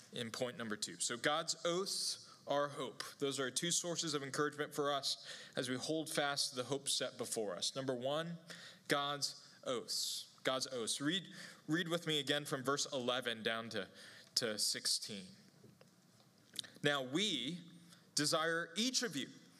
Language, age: English, 20-39